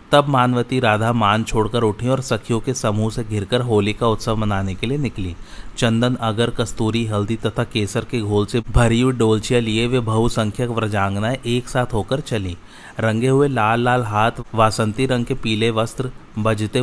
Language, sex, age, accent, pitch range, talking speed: Hindi, male, 30-49, native, 105-125 Hz, 180 wpm